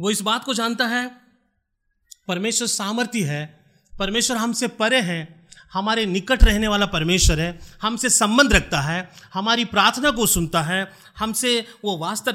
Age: 30-49